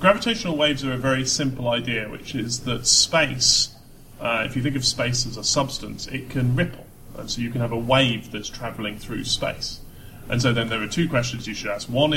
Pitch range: 115-140 Hz